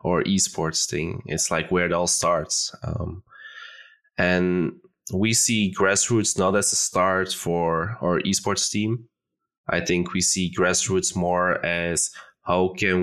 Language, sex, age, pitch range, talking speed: English, male, 20-39, 85-95 Hz, 145 wpm